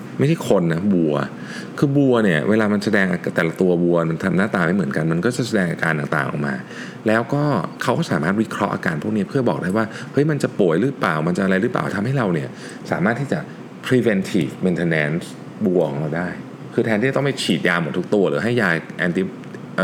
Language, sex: Thai, male